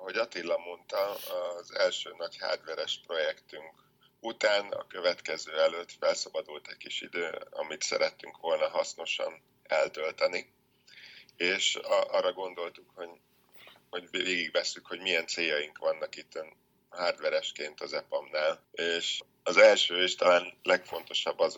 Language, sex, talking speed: Hungarian, male, 115 wpm